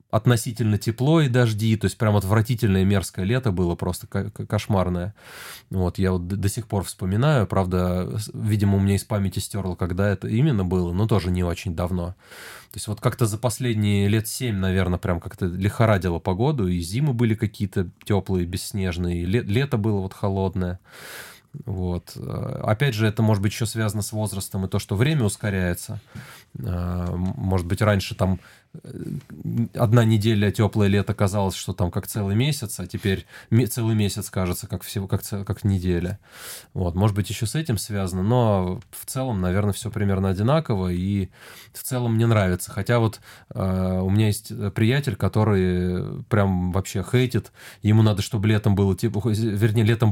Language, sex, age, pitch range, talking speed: Russian, male, 20-39, 95-120 Hz, 165 wpm